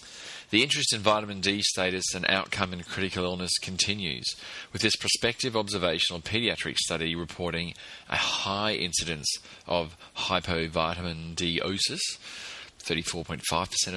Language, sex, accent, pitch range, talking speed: English, male, Australian, 85-100 Hz, 110 wpm